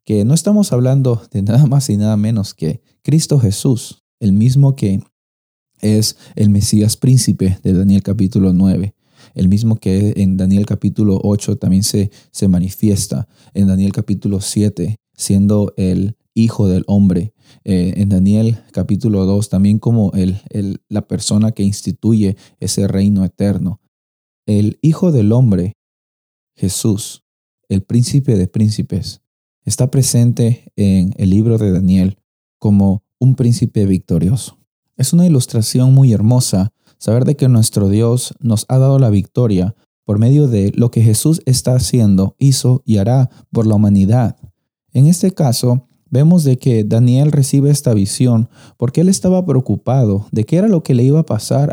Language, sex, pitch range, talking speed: Spanish, male, 100-130 Hz, 155 wpm